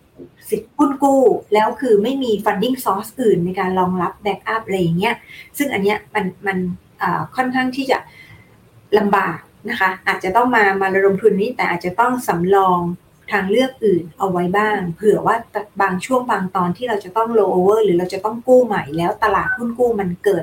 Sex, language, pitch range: female, Thai, 185-230 Hz